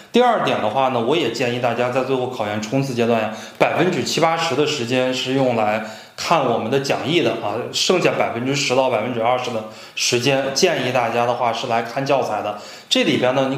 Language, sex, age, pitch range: Chinese, male, 20-39, 115-145 Hz